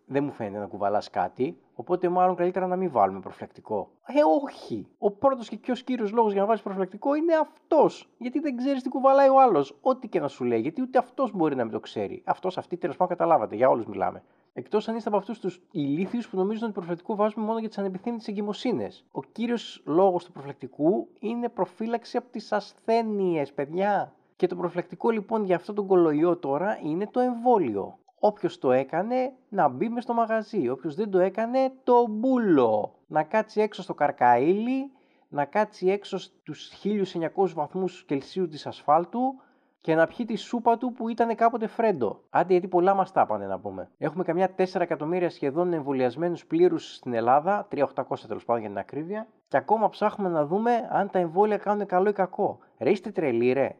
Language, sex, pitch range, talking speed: Greek, male, 170-230 Hz, 190 wpm